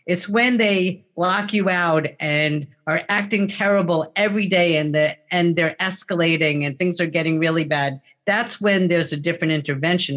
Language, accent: English, American